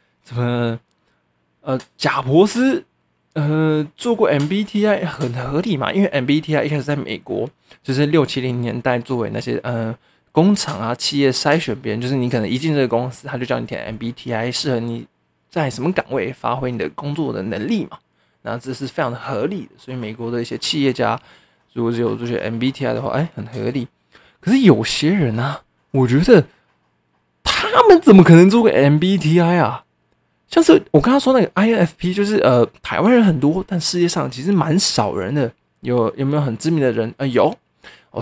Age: 20-39